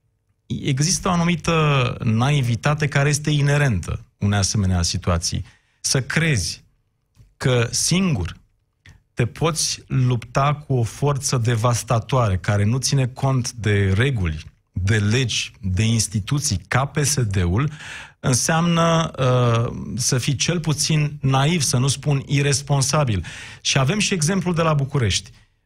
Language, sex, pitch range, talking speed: Romanian, male, 110-150 Hz, 115 wpm